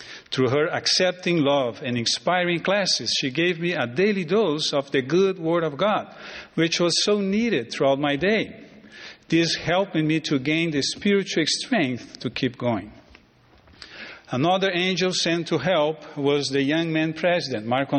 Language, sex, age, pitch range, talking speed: English, male, 50-69, 145-185 Hz, 160 wpm